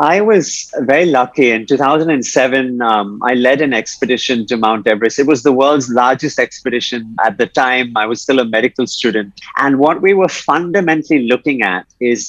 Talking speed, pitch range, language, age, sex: 180 wpm, 115-145 Hz, English, 30-49, male